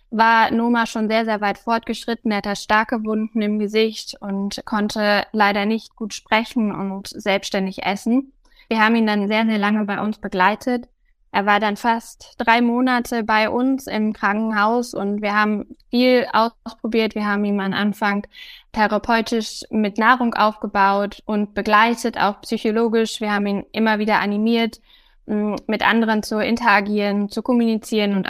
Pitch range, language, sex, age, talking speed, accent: 205-230 Hz, German, female, 10-29, 155 wpm, German